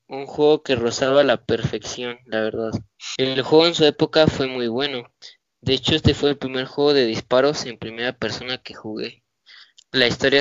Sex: male